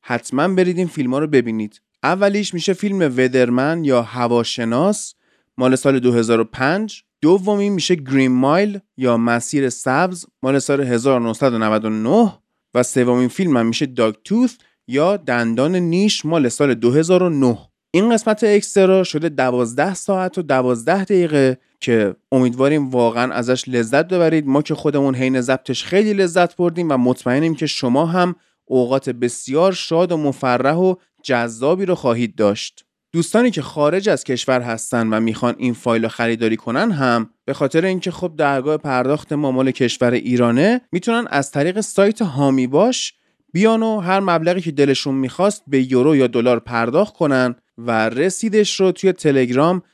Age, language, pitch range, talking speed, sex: 30-49, Persian, 125-185 Hz, 145 wpm, male